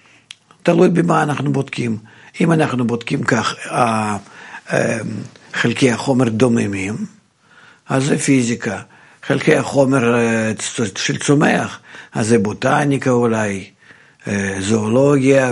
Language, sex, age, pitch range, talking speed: Hebrew, male, 50-69, 115-145 Hz, 90 wpm